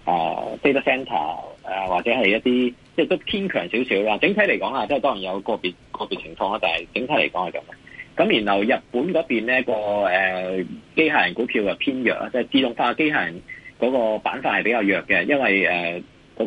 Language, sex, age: Chinese, male, 30-49